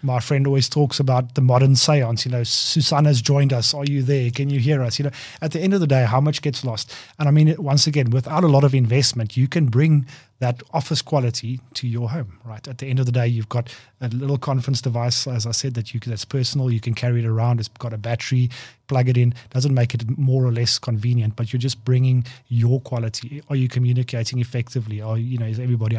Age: 30-49